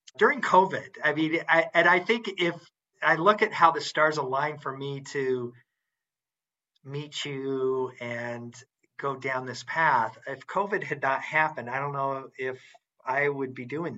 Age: 50-69